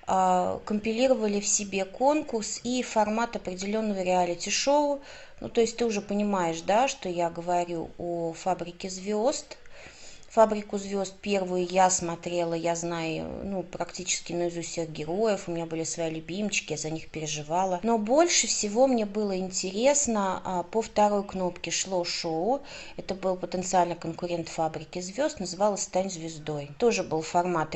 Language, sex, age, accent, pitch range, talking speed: Russian, female, 30-49, native, 170-210 Hz, 140 wpm